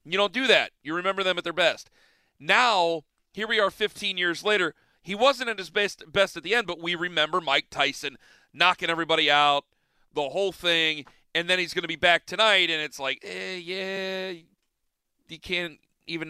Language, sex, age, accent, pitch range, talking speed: English, male, 40-59, American, 150-205 Hz, 195 wpm